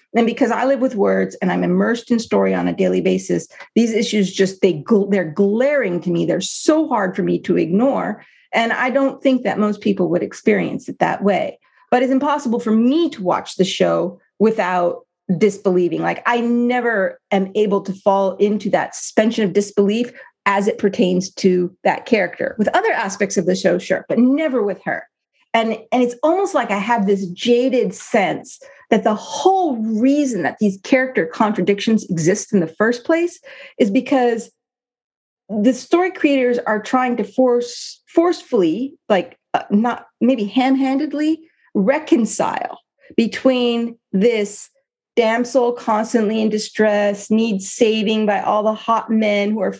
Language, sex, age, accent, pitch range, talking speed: English, female, 40-59, American, 200-250 Hz, 165 wpm